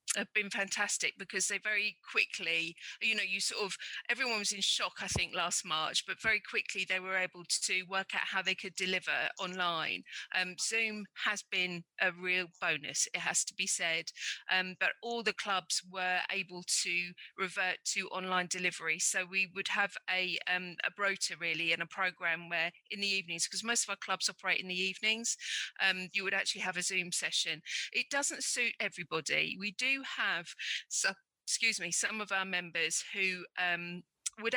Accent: British